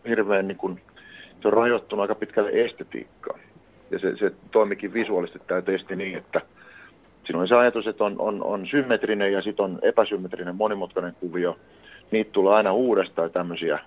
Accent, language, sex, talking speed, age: native, Finnish, male, 165 wpm, 40-59